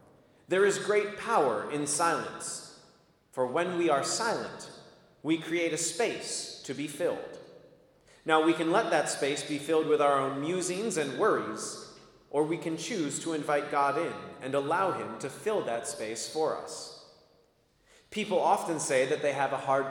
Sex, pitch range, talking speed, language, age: male, 135-200 Hz, 170 wpm, English, 30-49